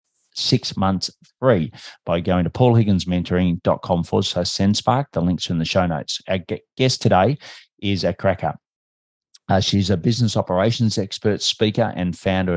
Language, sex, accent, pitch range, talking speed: English, male, Australian, 90-110 Hz, 160 wpm